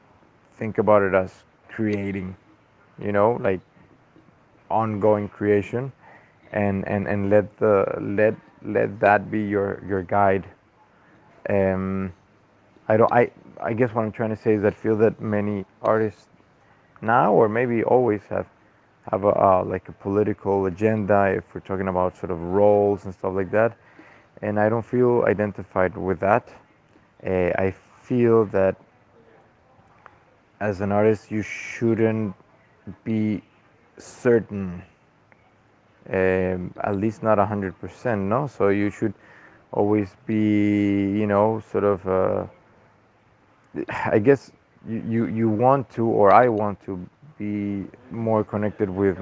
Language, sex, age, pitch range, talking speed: English, male, 20-39, 95-110 Hz, 140 wpm